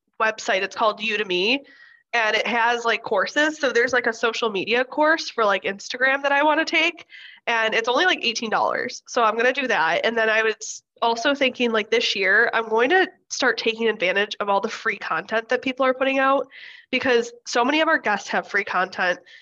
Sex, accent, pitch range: female, American, 215-270 Hz